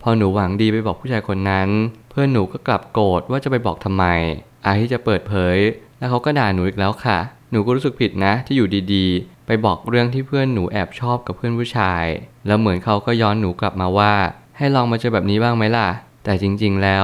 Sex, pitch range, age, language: male, 95-120 Hz, 20-39, Thai